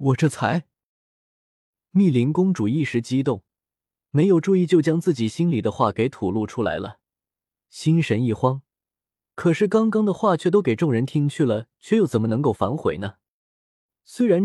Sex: male